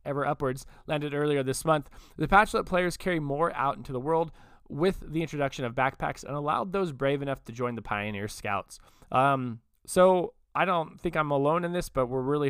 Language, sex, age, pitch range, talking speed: English, male, 20-39, 110-155 Hz, 205 wpm